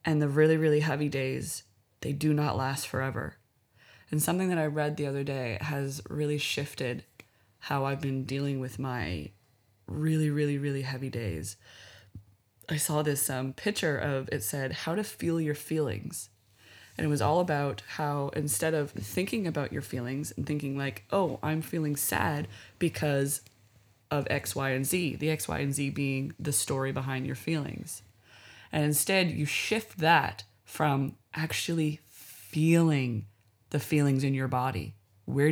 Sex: female